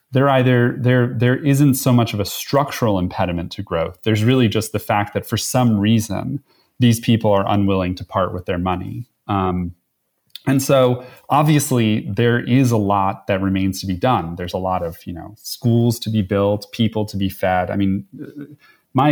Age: 30-49